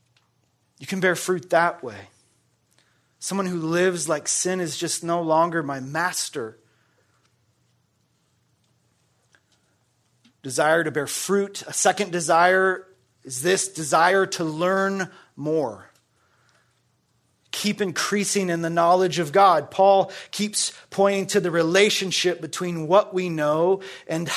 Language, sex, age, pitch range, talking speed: English, male, 30-49, 145-185 Hz, 120 wpm